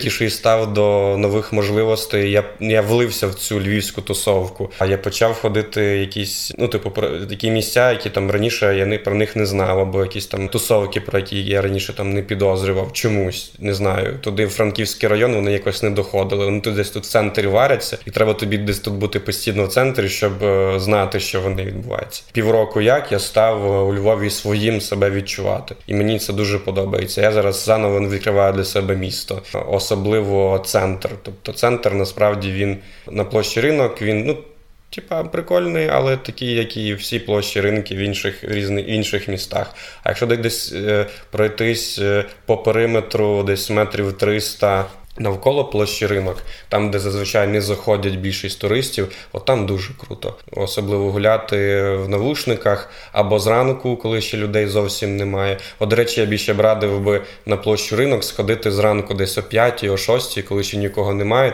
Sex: male